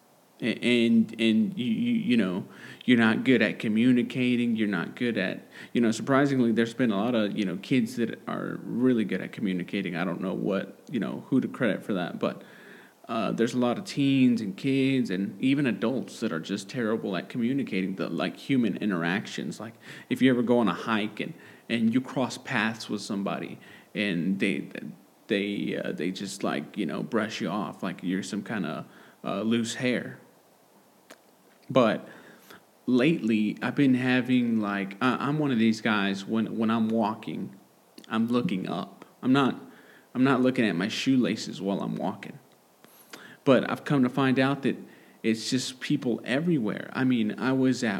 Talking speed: 185 wpm